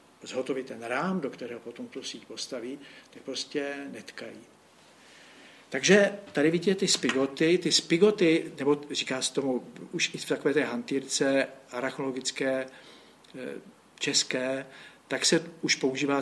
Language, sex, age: Czech, male, 60-79